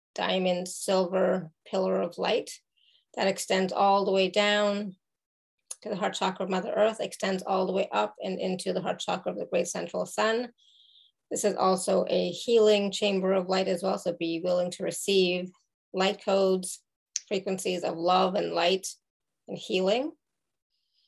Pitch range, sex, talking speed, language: 190-215 Hz, female, 160 wpm, English